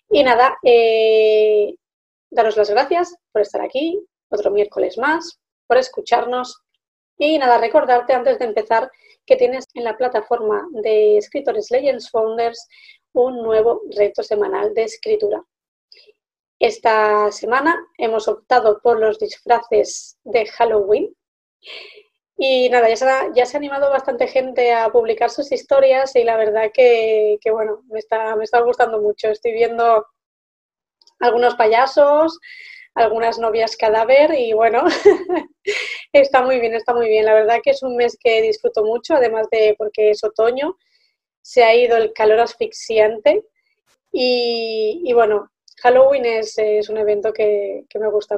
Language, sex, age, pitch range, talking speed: Spanish, female, 20-39, 220-290 Hz, 145 wpm